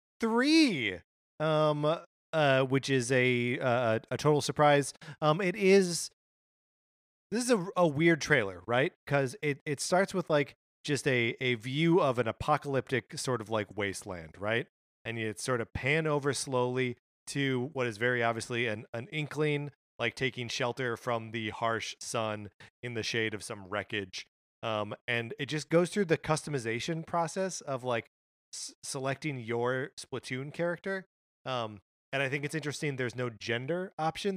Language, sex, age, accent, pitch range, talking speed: English, male, 30-49, American, 115-150 Hz, 160 wpm